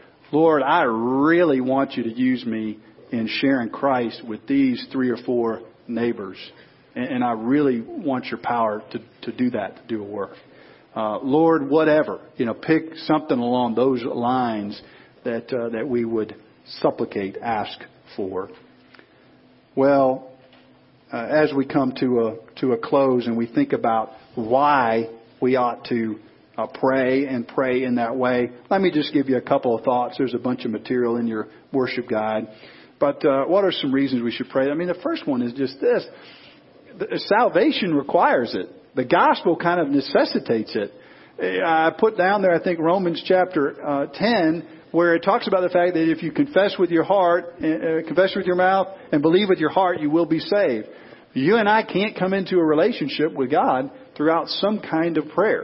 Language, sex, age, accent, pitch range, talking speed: English, male, 50-69, American, 125-175 Hz, 185 wpm